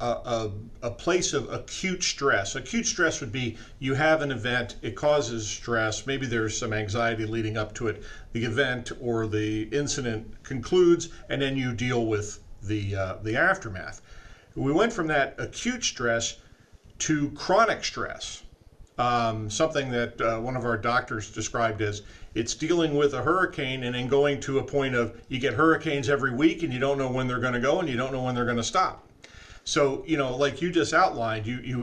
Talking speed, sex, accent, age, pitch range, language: 190 wpm, male, American, 40-59, 110-145 Hz, English